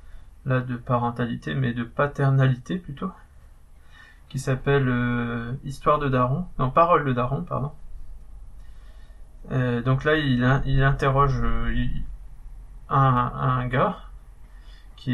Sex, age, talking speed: male, 20-39, 115 wpm